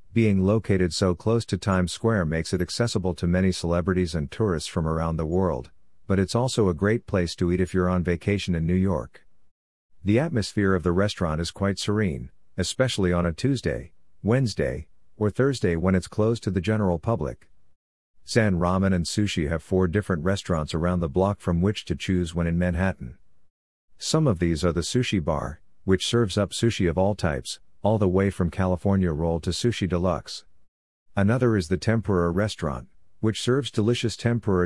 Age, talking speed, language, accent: 50-69, 185 wpm, English, American